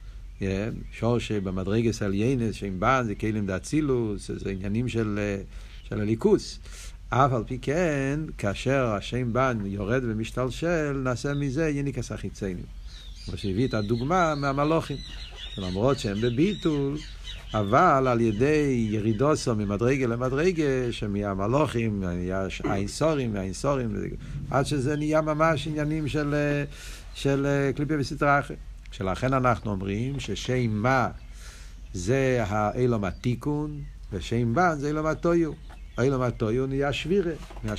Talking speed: 115 wpm